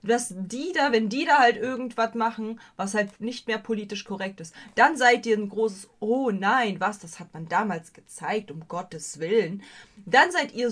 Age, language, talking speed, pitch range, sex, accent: 20-39, German, 195 wpm, 185-225 Hz, female, German